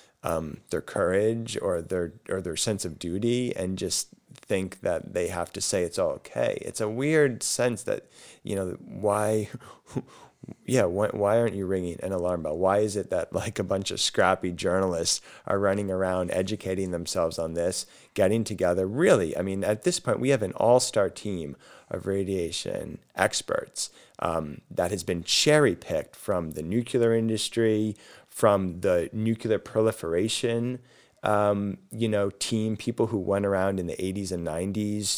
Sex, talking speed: male, 160 wpm